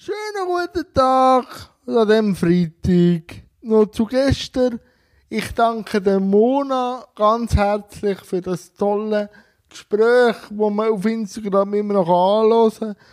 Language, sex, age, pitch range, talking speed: German, male, 20-39, 200-240 Hz, 115 wpm